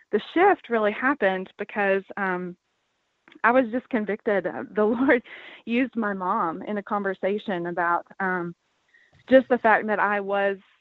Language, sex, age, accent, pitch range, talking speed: English, female, 20-39, American, 195-240 Hz, 150 wpm